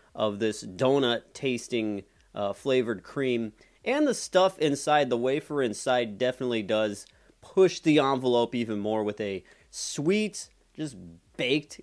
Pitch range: 110-145 Hz